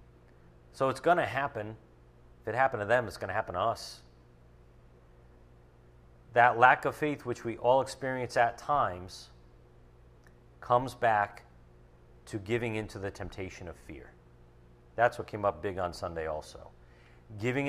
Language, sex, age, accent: English, male, 40-59, American